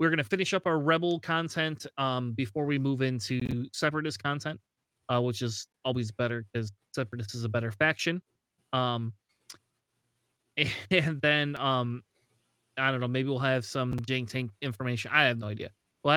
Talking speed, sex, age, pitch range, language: 165 wpm, male, 30-49, 125-155 Hz, English